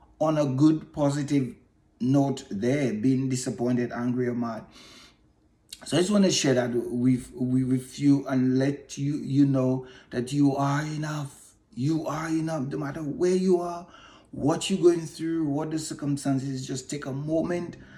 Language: English